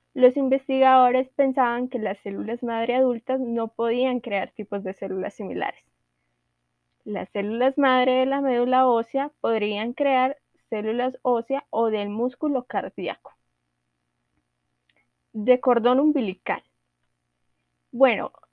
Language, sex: Spanish, female